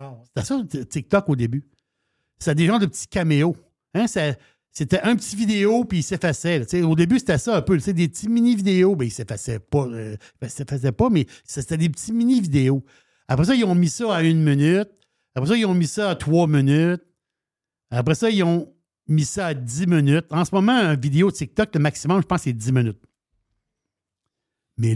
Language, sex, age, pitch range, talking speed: French, male, 60-79, 135-190 Hz, 200 wpm